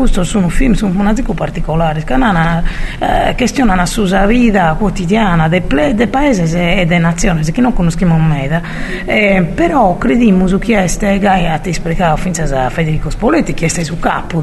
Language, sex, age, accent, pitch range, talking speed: Italian, female, 40-59, native, 165-210 Hz, 175 wpm